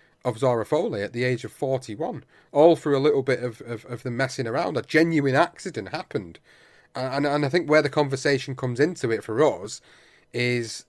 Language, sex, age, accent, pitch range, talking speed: English, male, 30-49, British, 115-145 Hz, 205 wpm